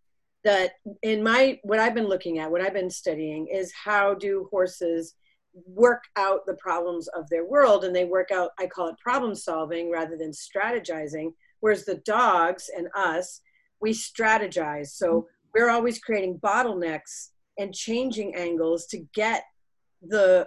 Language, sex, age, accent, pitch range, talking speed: English, female, 40-59, American, 175-225 Hz, 155 wpm